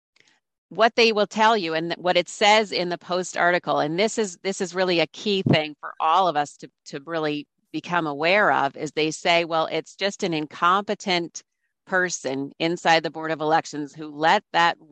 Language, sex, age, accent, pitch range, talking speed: English, female, 40-59, American, 150-190 Hz, 195 wpm